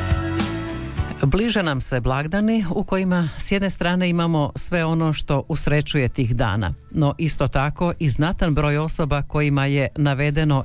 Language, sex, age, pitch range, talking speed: Croatian, female, 50-69, 130-160 Hz, 145 wpm